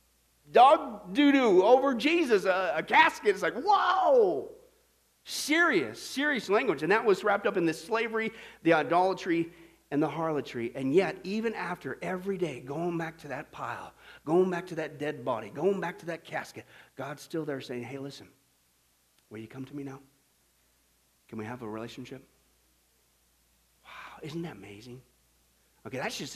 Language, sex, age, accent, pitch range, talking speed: English, male, 40-59, American, 125-185 Hz, 165 wpm